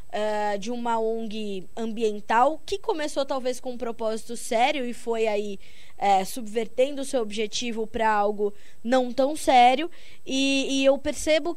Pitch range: 215-270 Hz